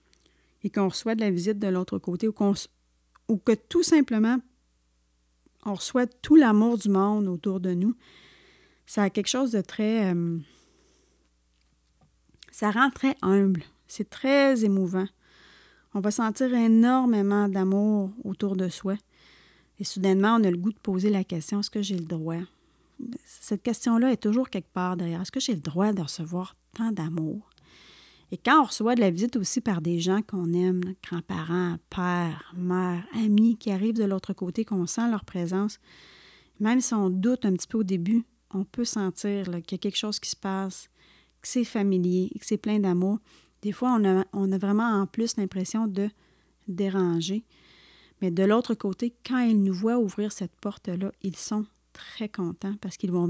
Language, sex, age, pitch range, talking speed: French, female, 30-49, 185-225 Hz, 180 wpm